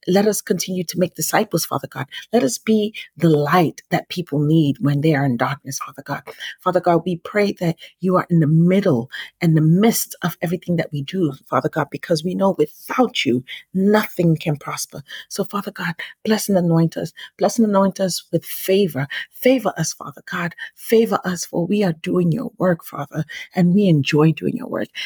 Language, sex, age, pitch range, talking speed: English, female, 40-59, 165-200 Hz, 200 wpm